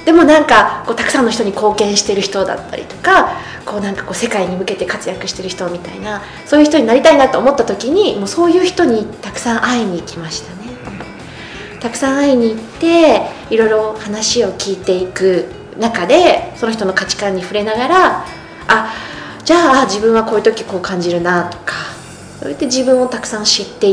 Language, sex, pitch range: Japanese, female, 185-275 Hz